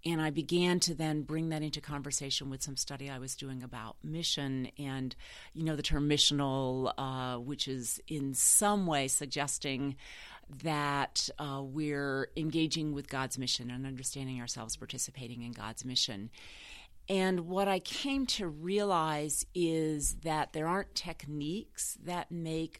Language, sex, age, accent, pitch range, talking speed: English, female, 40-59, American, 135-160 Hz, 150 wpm